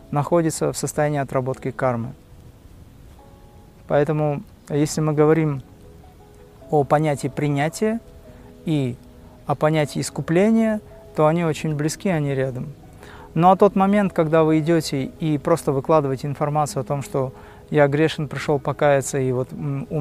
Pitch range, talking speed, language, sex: 135-165 Hz, 130 wpm, Russian, male